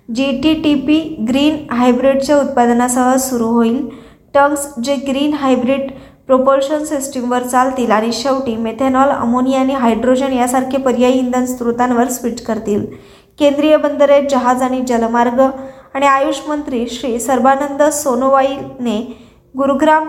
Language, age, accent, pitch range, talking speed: Marathi, 20-39, native, 240-280 Hz, 115 wpm